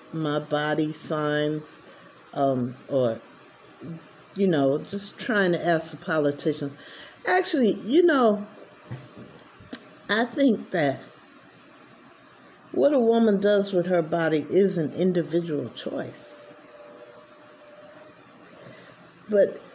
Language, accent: English, American